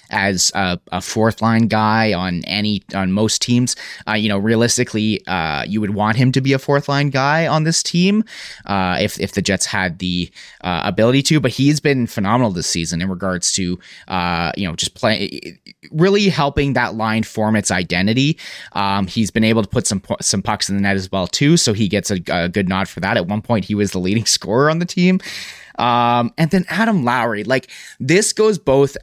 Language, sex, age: English, male, 30-49